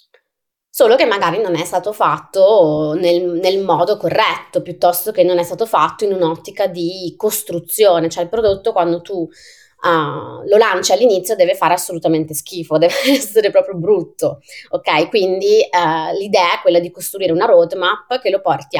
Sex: female